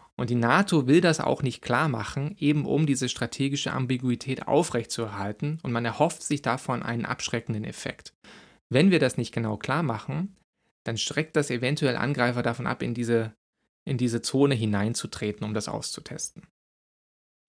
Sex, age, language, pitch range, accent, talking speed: male, 20-39, German, 115-145 Hz, German, 160 wpm